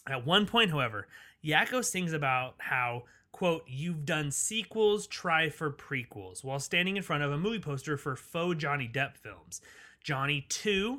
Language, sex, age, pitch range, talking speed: English, male, 30-49, 135-160 Hz, 165 wpm